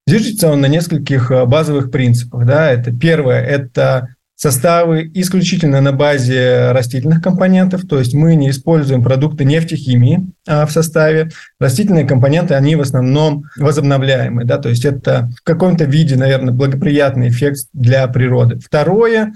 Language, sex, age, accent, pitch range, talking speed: Russian, male, 20-39, native, 135-165 Hz, 145 wpm